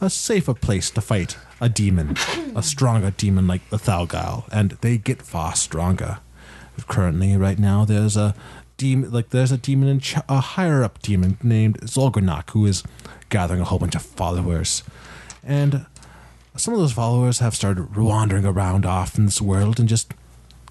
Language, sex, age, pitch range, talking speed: English, male, 30-49, 90-130 Hz, 160 wpm